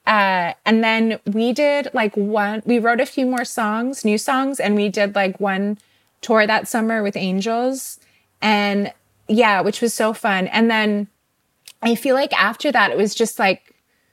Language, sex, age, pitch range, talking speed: English, female, 20-39, 205-250 Hz, 180 wpm